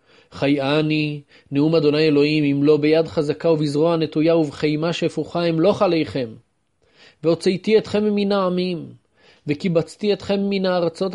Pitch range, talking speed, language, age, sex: 145-175 Hz, 125 wpm, Hebrew, 30-49, male